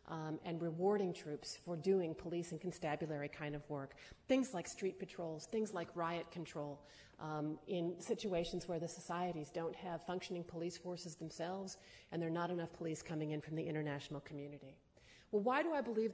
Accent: American